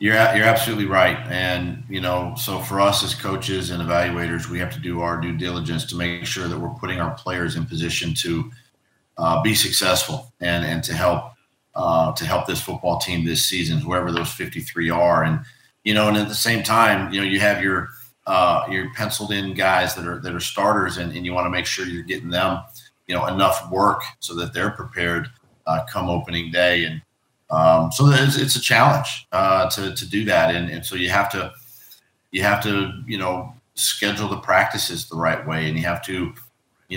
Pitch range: 85-110 Hz